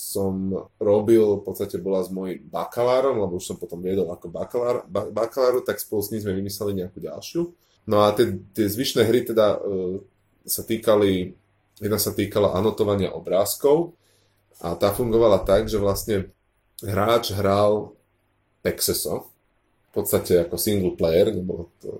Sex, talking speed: male, 155 wpm